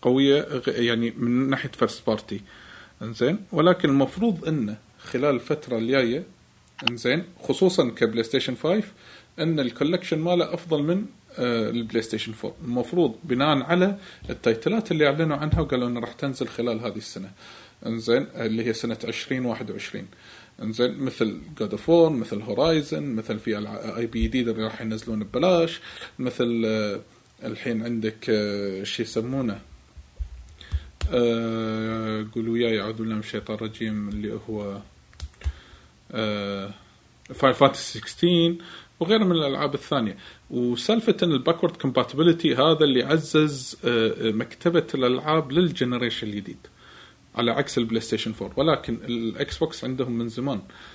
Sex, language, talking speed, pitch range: male, Arabic, 120 wpm, 110-150 Hz